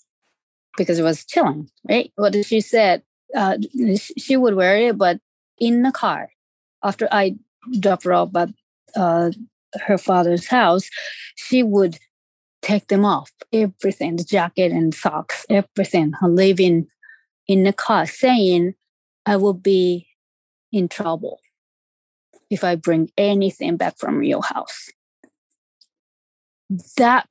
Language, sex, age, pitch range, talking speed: English, female, 30-49, 175-225 Hz, 120 wpm